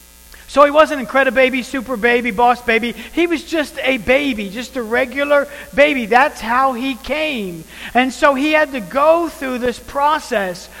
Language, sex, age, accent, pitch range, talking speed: English, male, 40-59, American, 210-260 Hz, 180 wpm